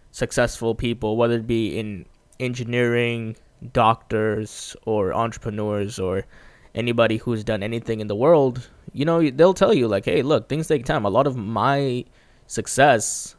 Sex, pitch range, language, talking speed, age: male, 110-140 Hz, English, 150 wpm, 20-39